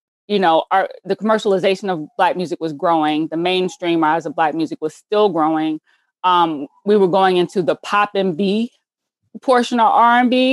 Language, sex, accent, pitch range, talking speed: English, female, American, 165-205 Hz, 170 wpm